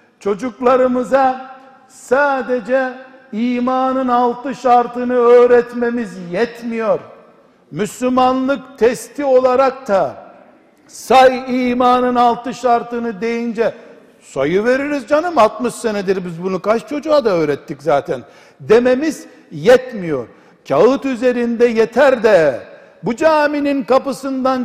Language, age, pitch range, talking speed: Turkish, 60-79, 240-275 Hz, 90 wpm